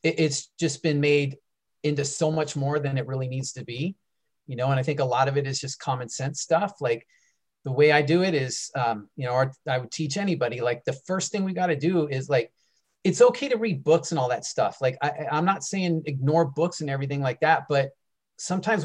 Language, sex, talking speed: English, male, 235 wpm